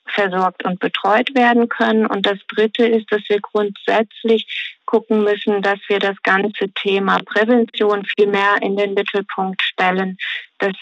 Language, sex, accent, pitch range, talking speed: German, female, German, 195-230 Hz, 150 wpm